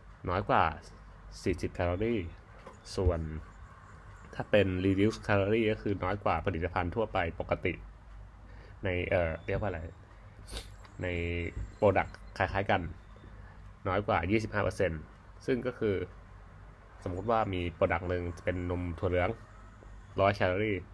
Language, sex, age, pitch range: Thai, male, 20-39, 90-105 Hz